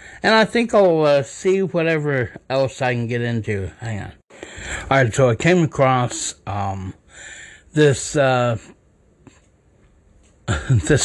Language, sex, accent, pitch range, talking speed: English, male, American, 115-145 Hz, 130 wpm